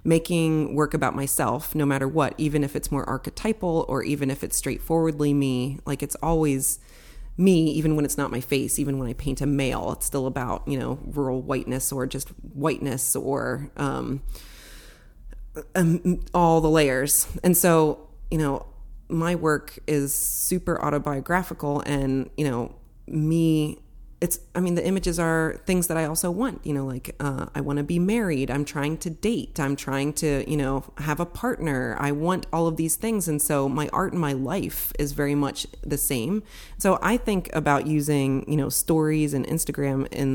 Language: English